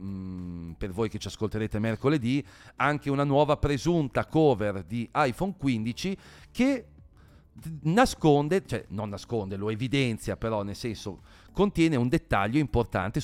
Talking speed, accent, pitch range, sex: 130 wpm, native, 105-135 Hz, male